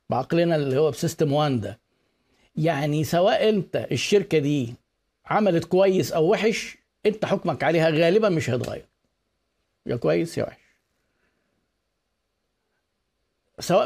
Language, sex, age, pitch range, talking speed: Arabic, male, 50-69, 140-180 Hz, 115 wpm